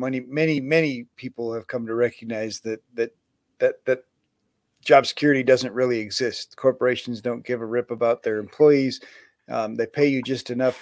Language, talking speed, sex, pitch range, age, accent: English, 170 wpm, male, 120-140 Hz, 40-59, American